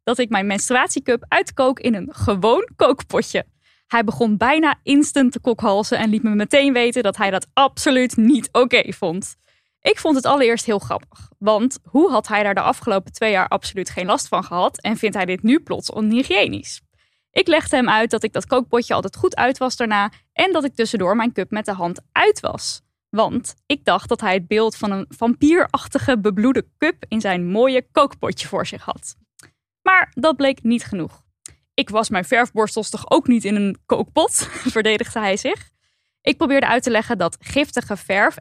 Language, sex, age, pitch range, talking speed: Dutch, female, 10-29, 215-280 Hz, 190 wpm